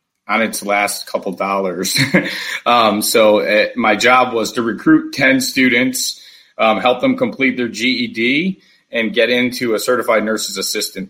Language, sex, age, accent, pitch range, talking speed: English, male, 30-49, American, 100-125 Hz, 150 wpm